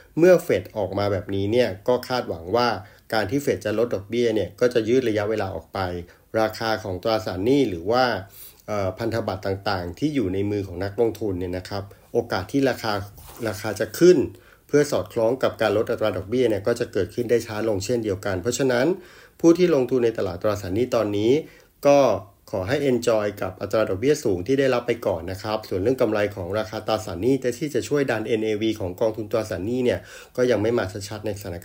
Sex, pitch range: male, 100-120 Hz